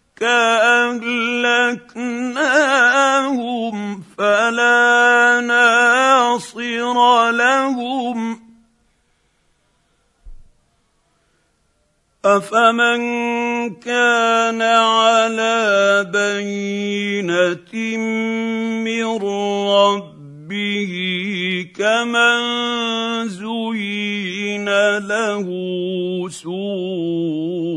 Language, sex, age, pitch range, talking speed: Arabic, male, 50-69, 155-230 Hz, 30 wpm